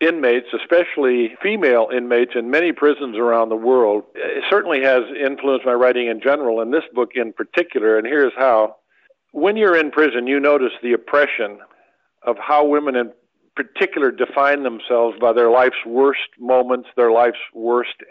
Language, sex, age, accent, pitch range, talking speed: English, male, 50-69, American, 120-150 Hz, 160 wpm